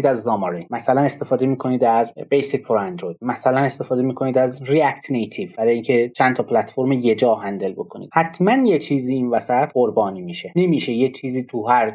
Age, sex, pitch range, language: 30-49, male, 125-175 Hz, Persian